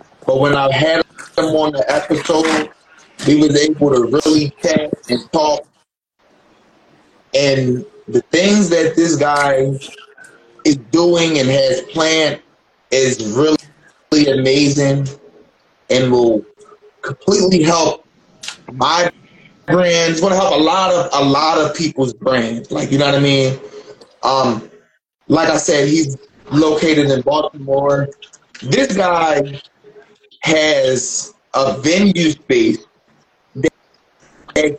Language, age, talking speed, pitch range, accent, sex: English, 30-49, 120 wpm, 140-180 Hz, American, male